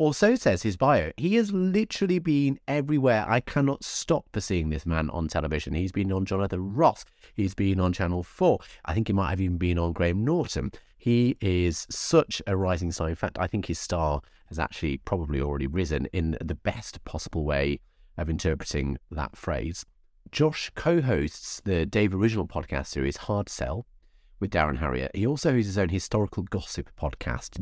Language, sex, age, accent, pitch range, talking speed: English, male, 30-49, British, 80-110 Hz, 180 wpm